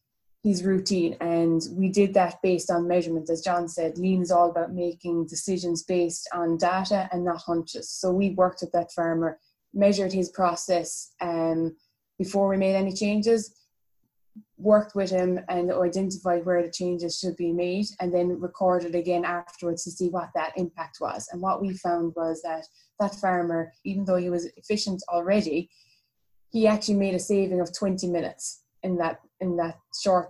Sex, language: female, English